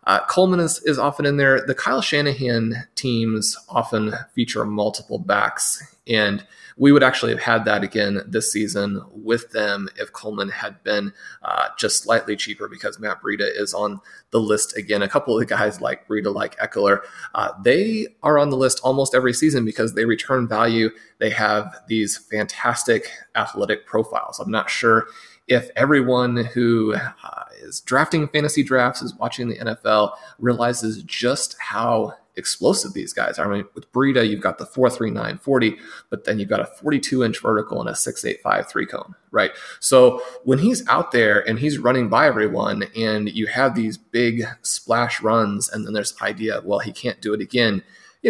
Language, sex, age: English, male, 30-49